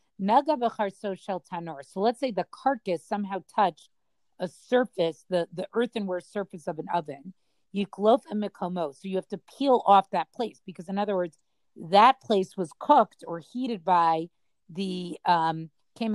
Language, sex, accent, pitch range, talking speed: English, female, American, 175-215 Hz, 140 wpm